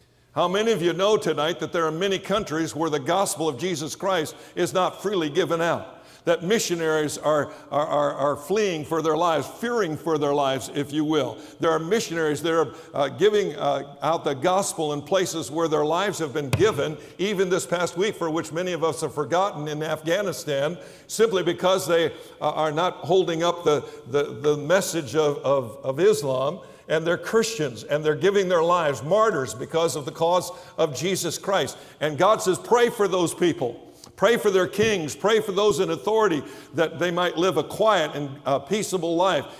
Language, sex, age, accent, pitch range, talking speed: English, male, 60-79, American, 150-190 Hz, 190 wpm